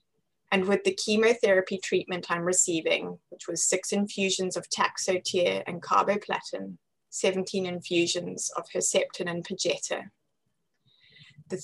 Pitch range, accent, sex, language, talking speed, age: 180-265 Hz, British, female, English, 115 wpm, 20-39